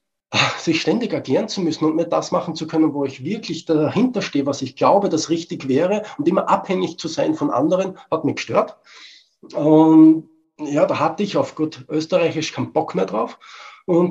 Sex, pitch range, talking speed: male, 135-180 Hz, 190 wpm